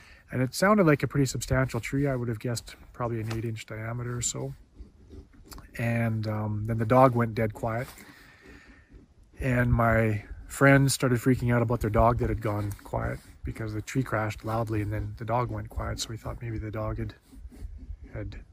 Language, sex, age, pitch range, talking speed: English, male, 30-49, 105-125 Hz, 190 wpm